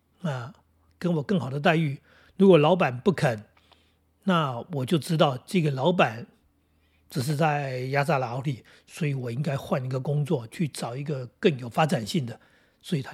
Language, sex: Chinese, male